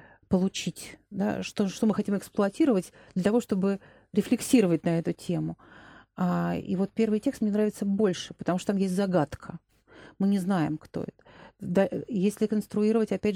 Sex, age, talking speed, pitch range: female, 40-59, 150 wpm, 175-205 Hz